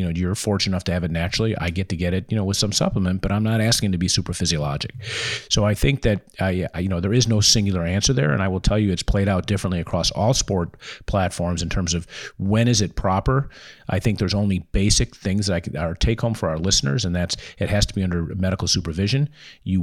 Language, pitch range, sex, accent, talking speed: English, 90-105 Hz, male, American, 255 wpm